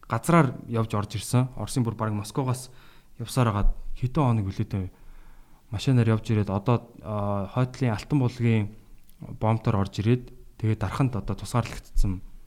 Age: 20-39